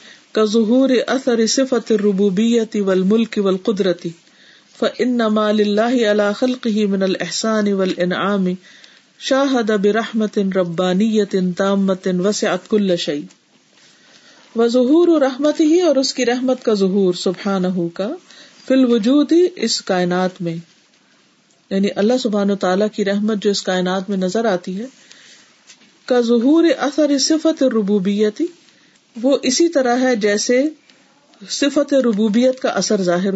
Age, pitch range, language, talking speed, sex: 50-69, 195-255 Hz, Urdu, 95 wpm, female